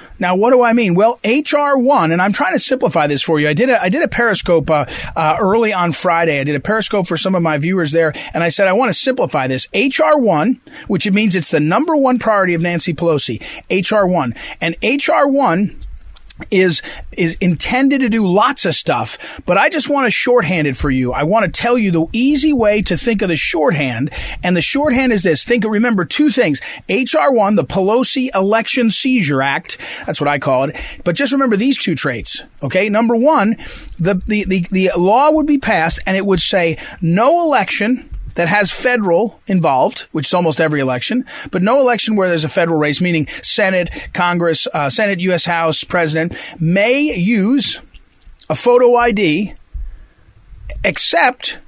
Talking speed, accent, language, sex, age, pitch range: 195 wpm, American, English, male, 40-59, 165-240 Hz